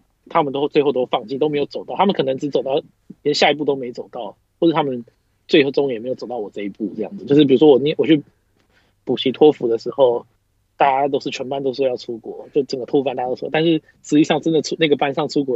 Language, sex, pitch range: Chinese, male, 120-165 Hz